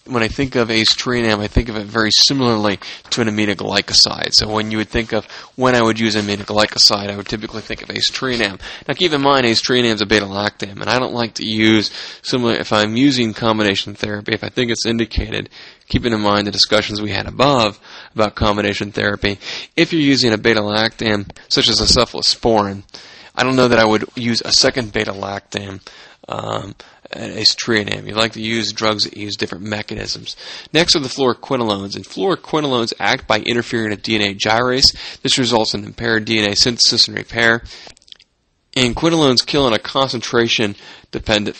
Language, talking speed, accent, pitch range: English, 175 wpm, American, 105-120 Hz